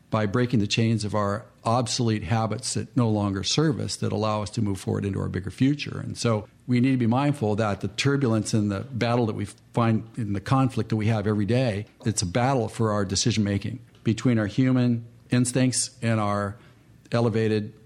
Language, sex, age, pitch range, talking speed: English, male, 50-69, 105-120 Hz, 200 wpm